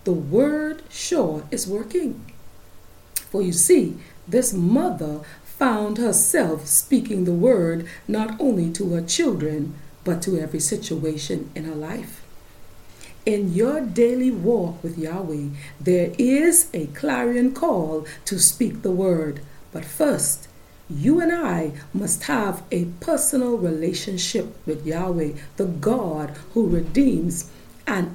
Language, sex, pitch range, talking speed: English, female, 165-240 Hz, 125 wpm